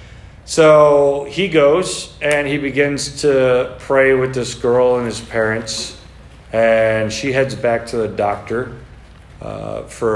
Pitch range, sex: 115-165 Hz, male